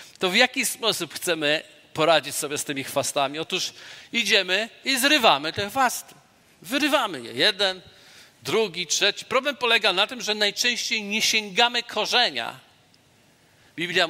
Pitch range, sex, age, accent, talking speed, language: 165-220 Hz, male, 50-69, native, 130 wpm, Polish